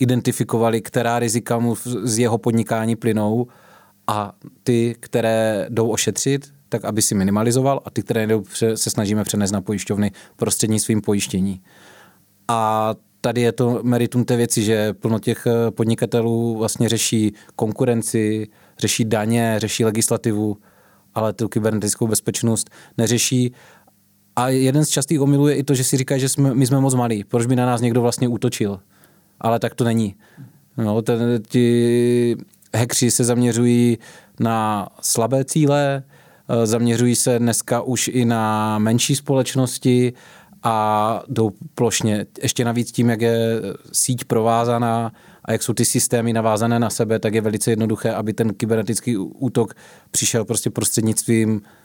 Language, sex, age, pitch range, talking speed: Czech, male, 30-49, 110-120 Hz, 140 wpm